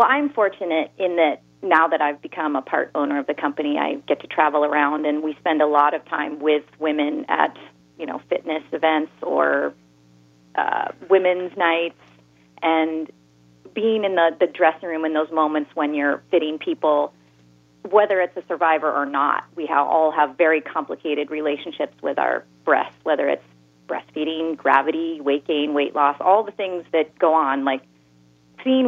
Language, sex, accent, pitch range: English, female, American, 145-180 Hz